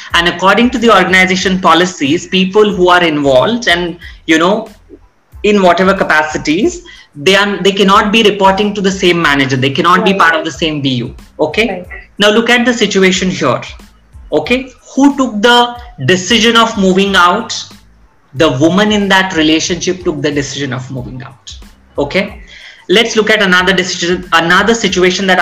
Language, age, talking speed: English, 30-49, 165 wpm